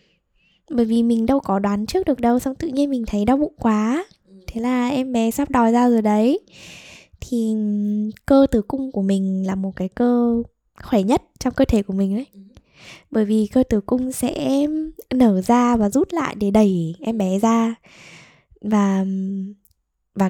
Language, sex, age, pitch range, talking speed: Vietnamese, female, 10-29, 195-240 Hz, 185 wpm